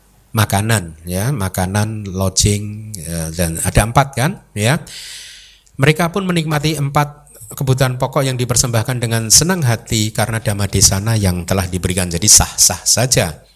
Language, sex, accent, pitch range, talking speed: Indonesian, male, native, 100-140 Hz, 130 wpm